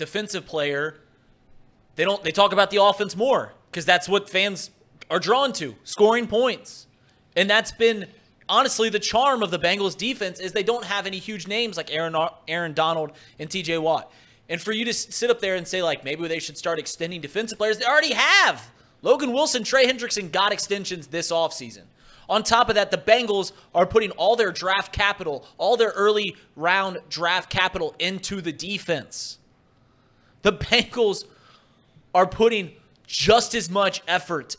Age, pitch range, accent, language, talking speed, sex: 30-49, 155-200 Hz, American, English, 175 wpm, male